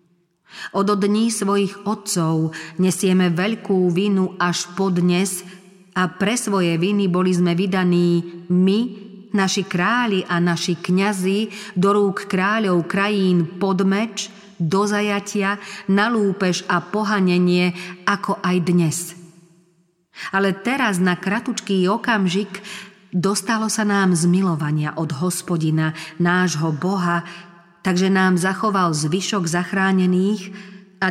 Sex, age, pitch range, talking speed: female, 40-59, 175-200 Hz, 105 wpm